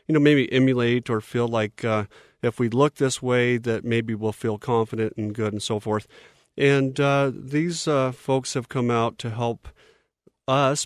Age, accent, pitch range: 40-59, American, 115-140 Hz